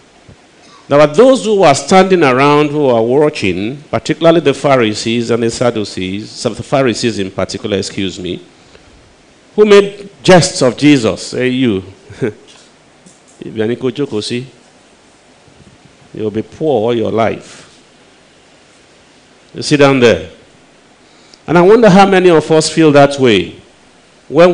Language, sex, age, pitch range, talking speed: English, male, 50-69, 115-155 Hz, 130 wpm